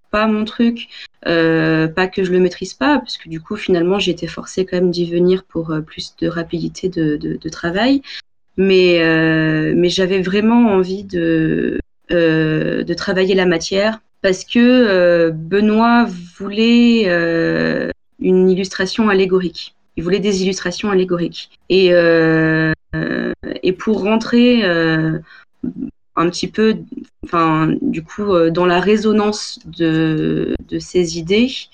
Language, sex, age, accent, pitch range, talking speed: French, female, 20-39, French, 165-205 Hz, 145 wpm